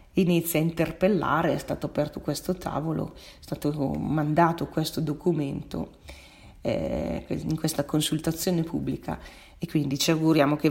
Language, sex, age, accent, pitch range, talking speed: Italian, female, 40-59, native, 150-170 Hz, 130 wpm